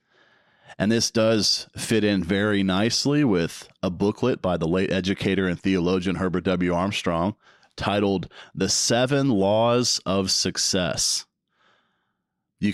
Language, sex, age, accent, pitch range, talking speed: English, male, 40-59, American, 95-110 Hz, 120 wpm